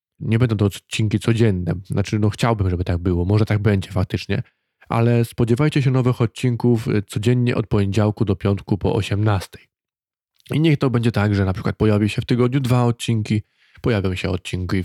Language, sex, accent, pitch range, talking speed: Polish, male, native, 100-120 Hz, 180 wpm